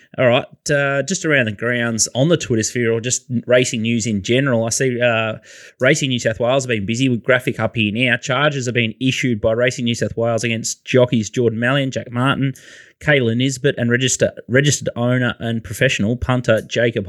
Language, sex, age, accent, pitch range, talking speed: English, male, 20-39, Australian, 110-130 Hz, 200 wpm